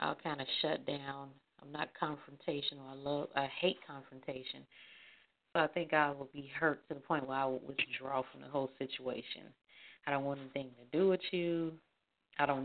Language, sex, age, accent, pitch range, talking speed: English, female, 30-49, American, 135-160 Hz, 195 wpm